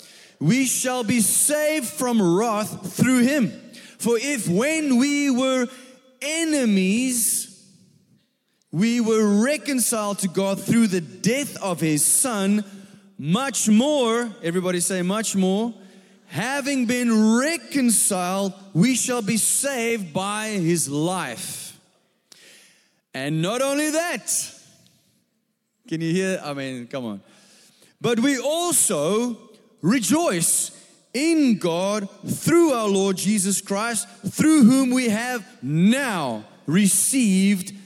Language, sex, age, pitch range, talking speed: English, male, 30-49, 185-245 Hz, 110 wpm